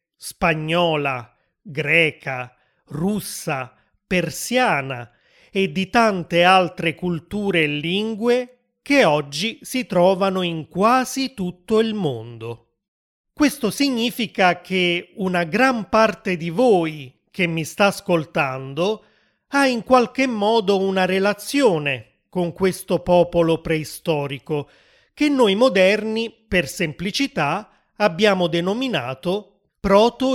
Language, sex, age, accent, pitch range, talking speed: Italian, male, 30-49, native, 160-215 Hz, 100 wpm